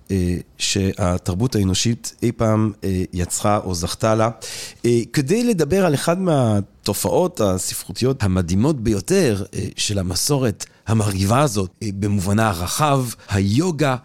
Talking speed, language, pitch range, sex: 120 wpm, Hebrew, 105-160 Hz, male